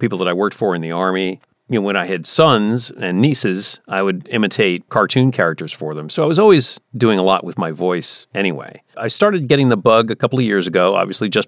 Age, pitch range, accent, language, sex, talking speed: 40-59, 95-135 Hz, American, English, male, 240 wpm